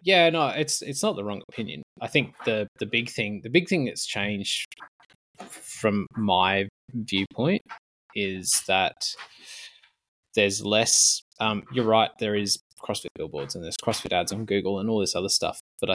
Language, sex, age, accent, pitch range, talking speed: English, male, 20-39, Australian, 100-120 Hz, 170 wpm